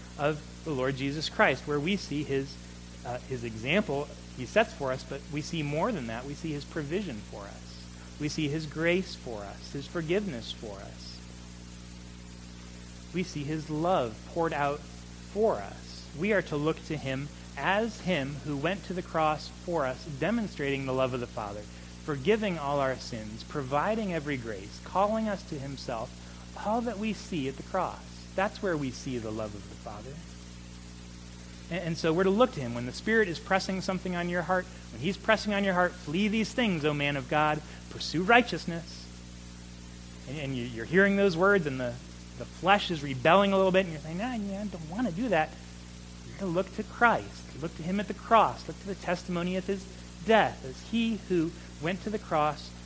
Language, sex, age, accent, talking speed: English, male, 30-49, American, 195 wpm